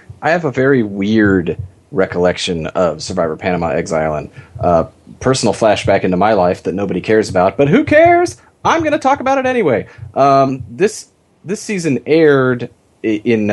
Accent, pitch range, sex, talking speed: American, 95-130 Hz, male, 165 wpm